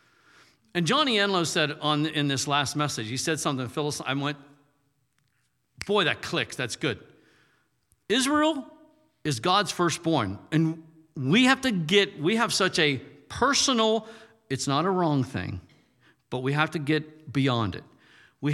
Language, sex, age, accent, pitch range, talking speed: English, male, 50-69, American, 125-170 Hz, 145 wpm